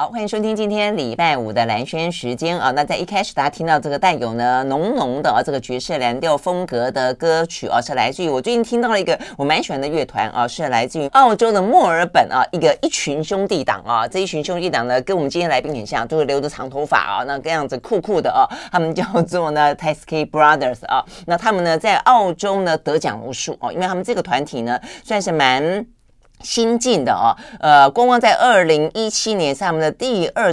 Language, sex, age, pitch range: Chinese, female, 30-49, 130-195 Hz